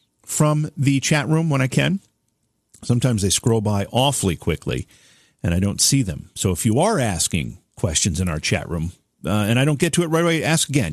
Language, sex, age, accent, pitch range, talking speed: English, male, 50-69, American, 105-150 Hz, 215 wpm